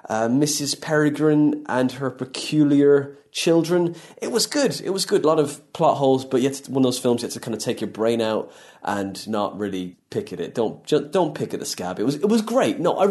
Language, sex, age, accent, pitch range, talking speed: English, male, 20-39, British, 125-165 Hz, 240 wpm